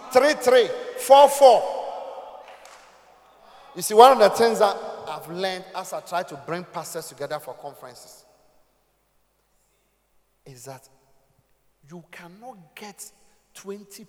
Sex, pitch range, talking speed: male, 155-250 Hz, 120 wpm